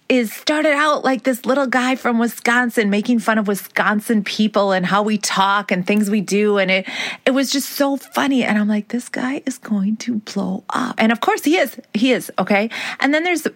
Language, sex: English, female